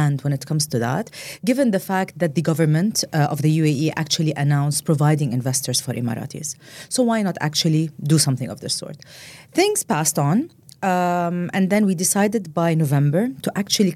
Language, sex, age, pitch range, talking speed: English, female, 30-49, 150-195 Hz, 180 wpm